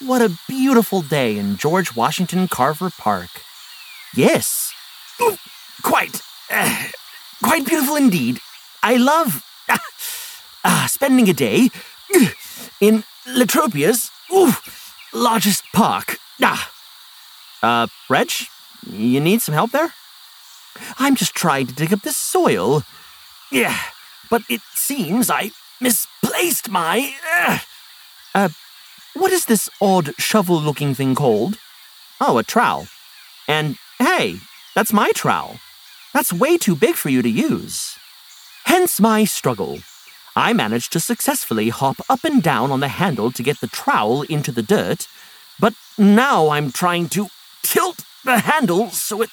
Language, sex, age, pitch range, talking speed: English, male, 30-49, 165-265 Hz, 125 wpm